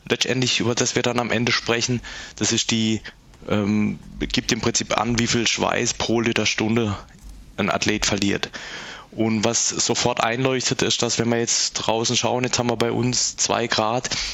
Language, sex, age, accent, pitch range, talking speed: German, male, 20-39, German, 110-125 Hz, 180 wpm